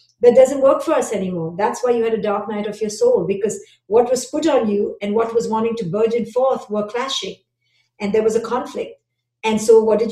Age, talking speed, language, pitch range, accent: 50-69, 235 wpm, English, 205-245 Hz, Indian